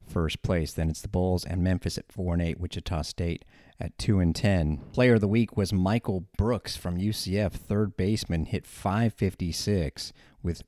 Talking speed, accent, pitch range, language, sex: 170 wpm, American, 85-105 Hz, English, male